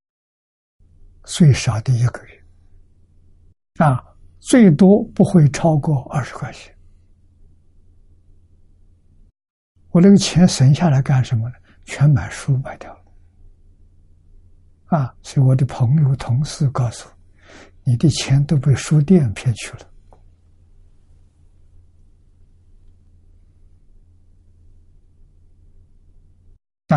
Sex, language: male, Chinese